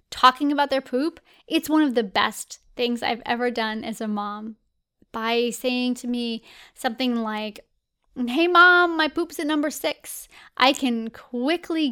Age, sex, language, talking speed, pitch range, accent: 10-29, female, English, 160 wpm, 230-290 Hz, American